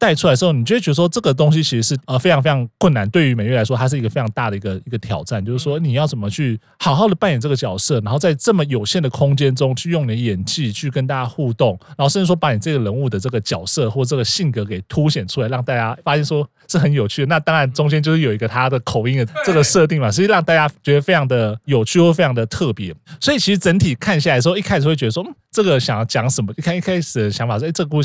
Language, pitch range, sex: Chinese, 125-165 Hz, male